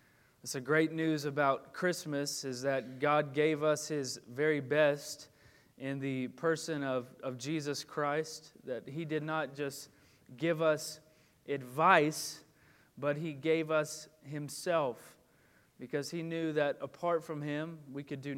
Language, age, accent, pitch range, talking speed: English, 20-39, American, 135-155 Hz, 140 wpm